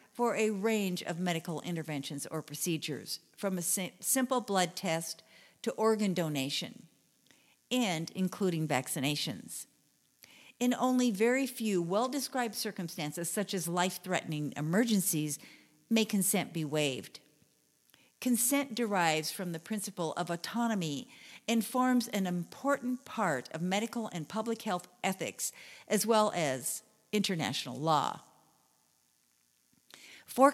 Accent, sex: American, female